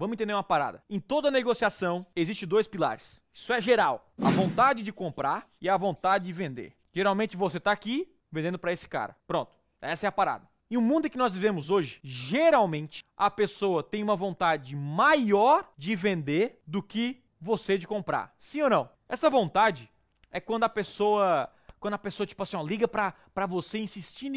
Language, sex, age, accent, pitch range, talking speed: Portuguese, male, 20-39, Brazilian, 170-225 Hz, 185 wpm